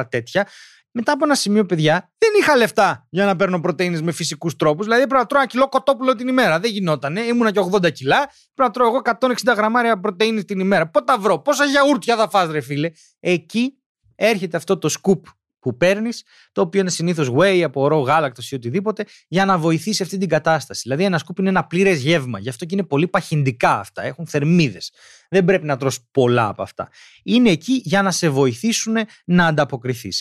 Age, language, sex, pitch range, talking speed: 30-49, Greek, male, 155-215 Hz, 200 wpm